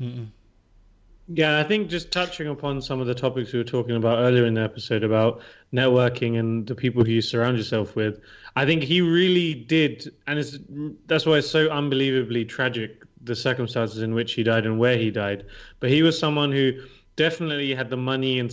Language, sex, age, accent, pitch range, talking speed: English, male, 20-39, British, 115-140 Hz, 200 wpm